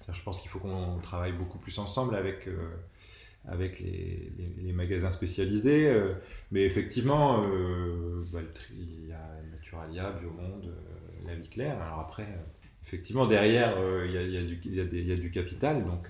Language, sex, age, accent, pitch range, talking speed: French, male, 30-49, French, 90-105 Hz, 170 wpm